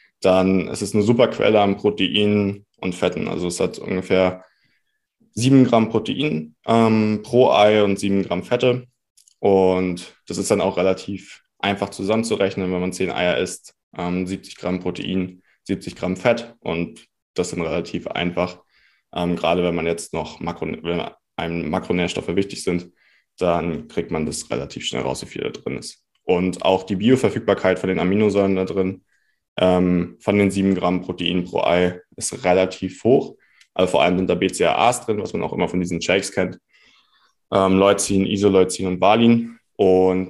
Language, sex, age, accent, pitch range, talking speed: German, male, 20-39, German, 90-100 Hz, 170 wpm